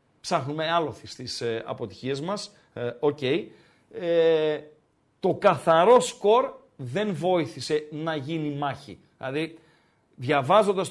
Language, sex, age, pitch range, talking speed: Greek, male, 40-59, 145-200 Hz, 105 wpm